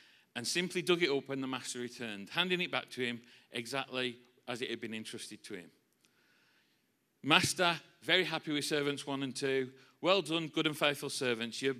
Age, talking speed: 40-59, 195 wpm